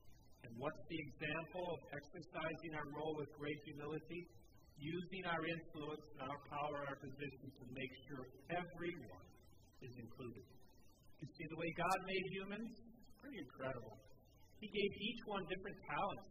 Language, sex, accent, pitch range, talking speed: English, male, American, 130-165 Hz, 150 wpm